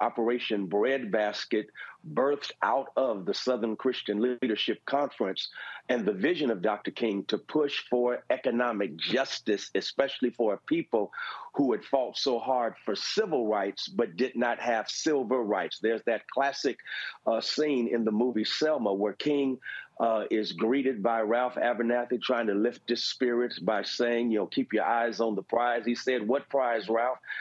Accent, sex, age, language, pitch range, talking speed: American, male, 50-69, English, 115-135 Hz, 165 wpm